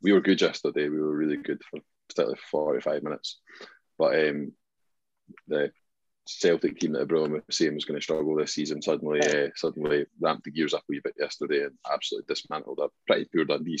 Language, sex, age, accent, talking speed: English, male, 20-39, British, 200 wpm